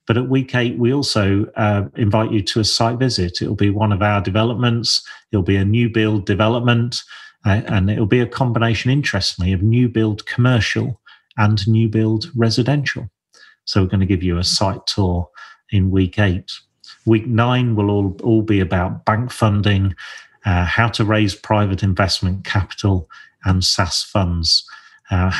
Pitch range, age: 95-115 Hz, 40-59